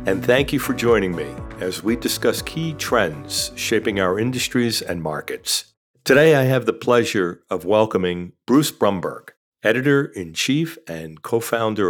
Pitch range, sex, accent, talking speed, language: 95-120 Hz, male, American, 140 wpm, English